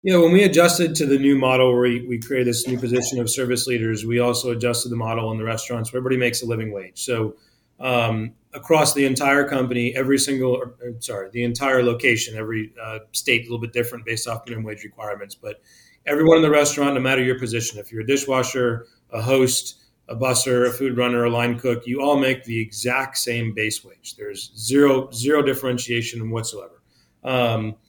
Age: 30-49